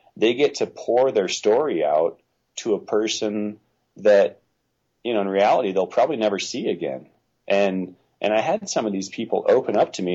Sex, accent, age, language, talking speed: male, American, 40-59, English, 190 wpm